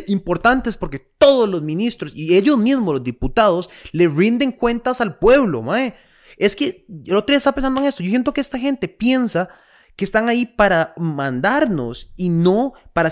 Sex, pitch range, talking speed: male, 150-245 Hz, 180 wpm